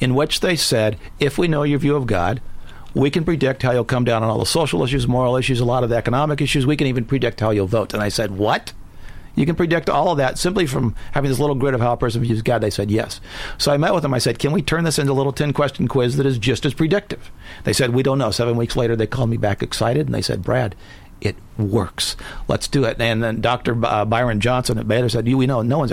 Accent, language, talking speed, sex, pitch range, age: American, English, 275 wpm, male, 105-135 Hz, 50-69